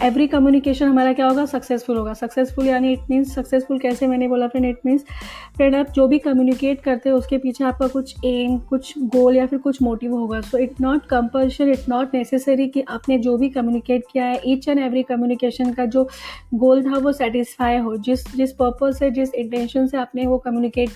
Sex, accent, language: female, native, Hindi